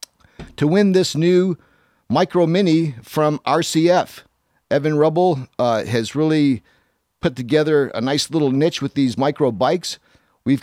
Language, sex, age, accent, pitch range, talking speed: English, male, 50-69, American, 125-160 Hz, 135 wpm